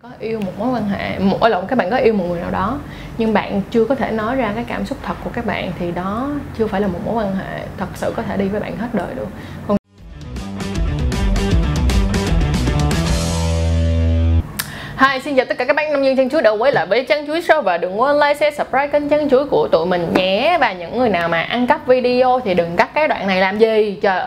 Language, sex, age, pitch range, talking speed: Vietnamese, female, 20-39, 175-235 Hz, 240 wpm